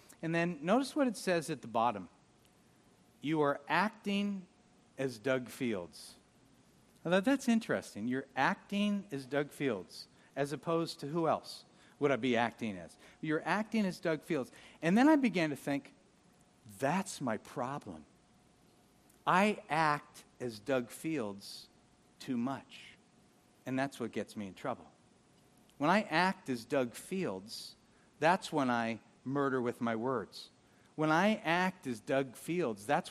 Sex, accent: male, American